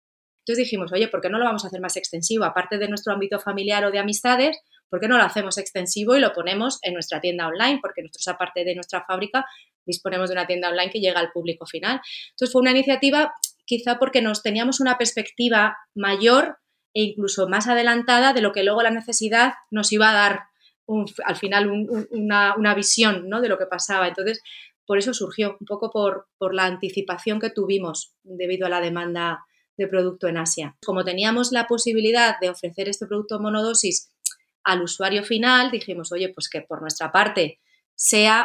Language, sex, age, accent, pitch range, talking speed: Spanish, female, 30-49, Spanish, 185-230 Hz, 190 wpm